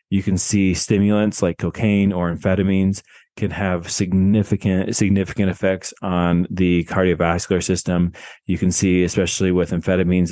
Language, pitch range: English, 90-100 Hz